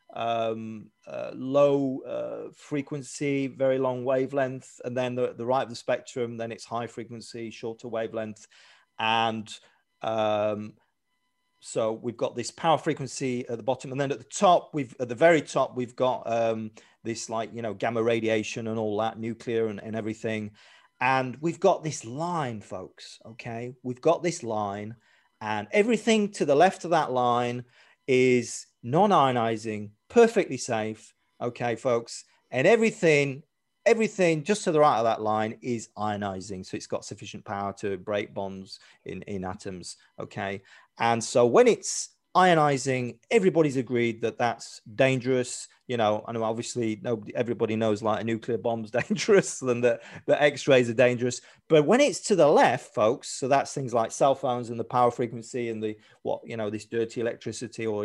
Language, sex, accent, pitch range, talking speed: English, male, British, 115-145 Hz, 165 wpm